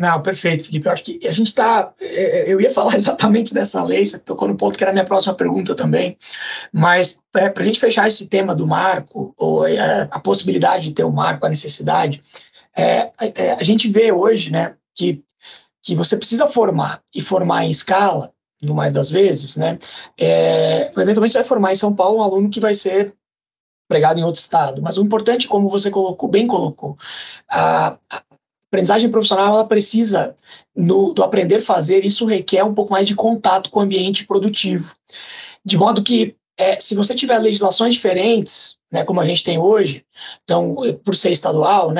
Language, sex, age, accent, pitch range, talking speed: Portuguese, male, 20-39, Brazilian, 175-215 Hz, 190 wpm